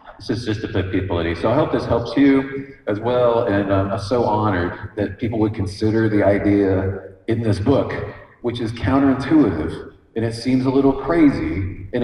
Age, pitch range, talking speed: 40-59, 100-125 Hz, 190 wpm